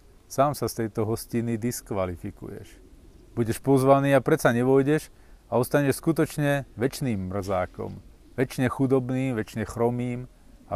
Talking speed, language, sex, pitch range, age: 115 wpm, Slovak, male, 95-120 Hz, 40-59